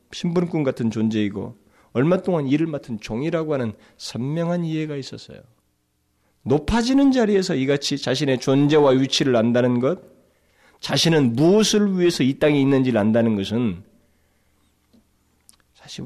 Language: Korean